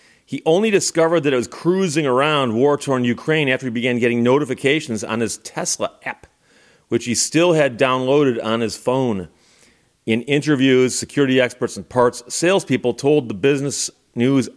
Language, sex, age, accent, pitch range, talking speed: English, male, 40-59, American, 115-140 Hz, 155 wpm